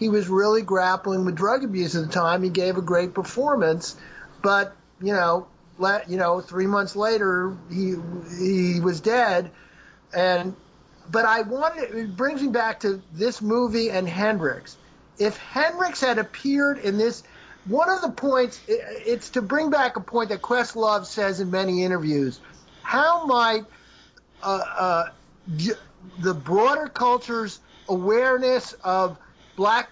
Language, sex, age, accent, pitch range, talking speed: English, male, 50-69, American, 185-235 Hz, 145 wpm